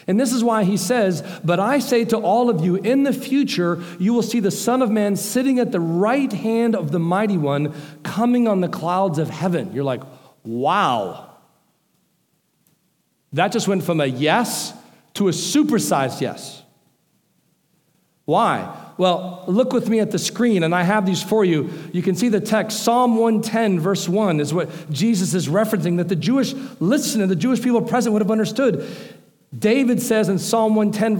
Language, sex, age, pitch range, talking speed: English, male, 50-69, 175-220 Hz, 185 wpm